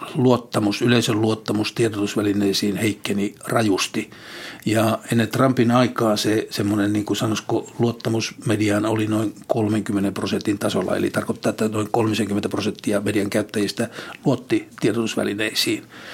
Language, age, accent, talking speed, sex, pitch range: Finnish, 60-79, native, 110 wpm, male, 105-120 Hz